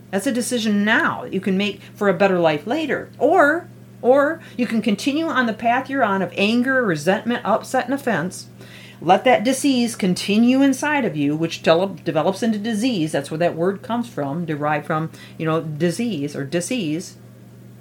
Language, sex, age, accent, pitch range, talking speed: English, female, 40-59, American, 175-250 Hz, 180 wpm